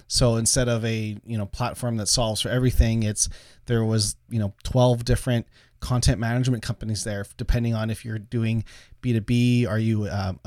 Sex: male